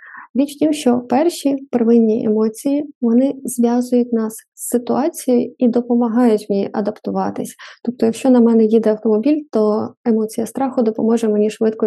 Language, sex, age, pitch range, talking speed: Ukrainian, female, 20-39, 220-255 Hz, 140 wpm